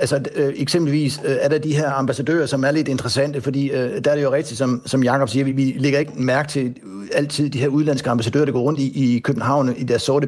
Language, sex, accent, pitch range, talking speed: Danish, male, native, 130-150 Hz, 255 wpm